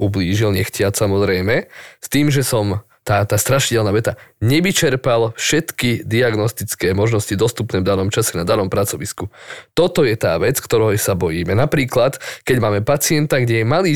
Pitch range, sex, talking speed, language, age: 105-135 Hz, male, 155 wpm, Slovak, 20-39